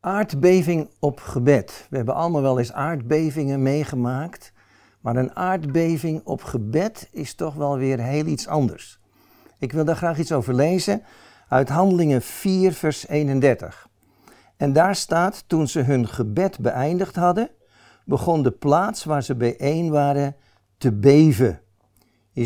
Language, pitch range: Dutch, 130-165 Hz